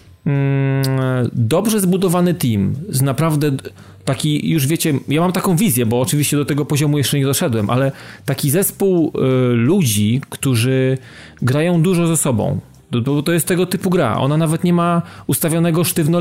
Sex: male